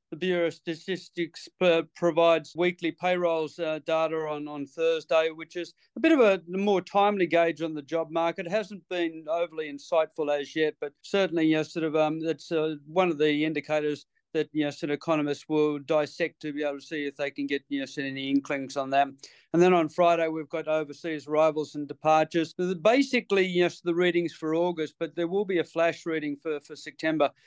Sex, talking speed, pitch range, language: male, 195 wpm, 155-180 Hz, English